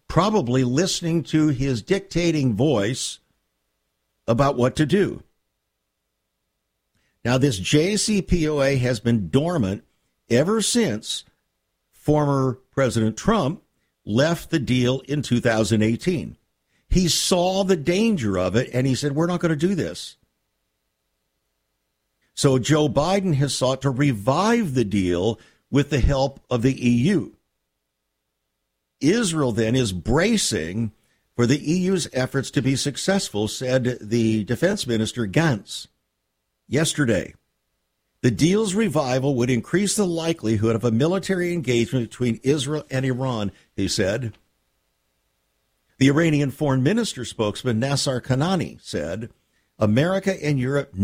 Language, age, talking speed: English, 50-69, 120 wpm